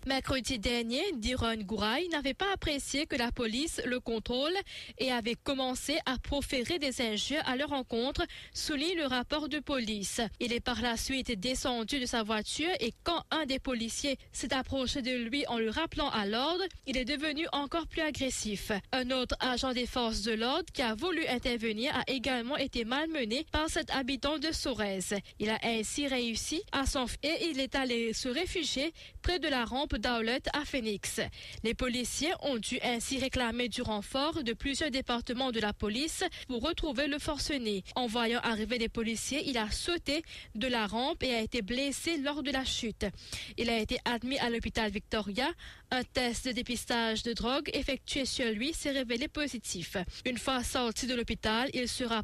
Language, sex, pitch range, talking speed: English, female, 235-290 Hz, 185 wpm